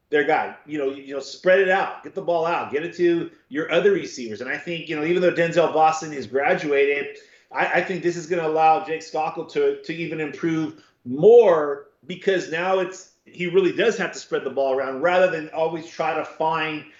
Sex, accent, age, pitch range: male, American, 30-49, 155-195 Hz